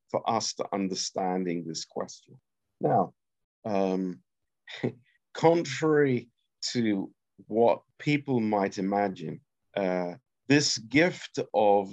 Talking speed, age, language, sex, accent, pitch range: 90 wpm, 50-69, Romanian, male, British, 100-130 Hz